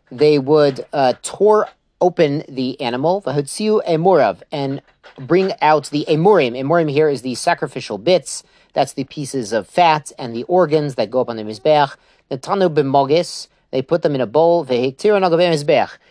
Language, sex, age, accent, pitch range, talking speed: English, male, 40-59, American, 135-175 Hz, 145 wpm